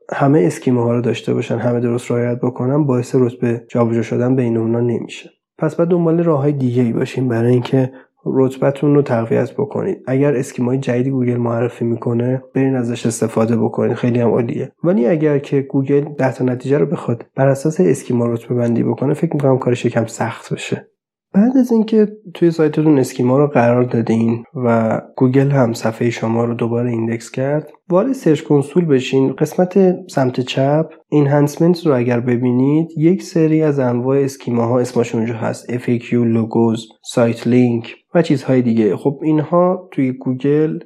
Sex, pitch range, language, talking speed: male, 120-145 Hz, Persian, 165 wpm